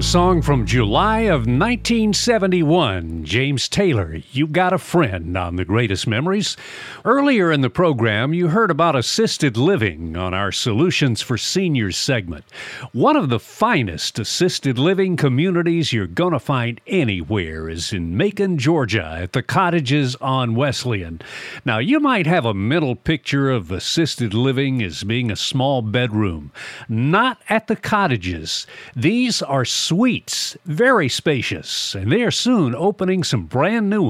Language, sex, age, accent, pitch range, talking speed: English, male, 50-69, American, 115-180 Hz, 150 wpm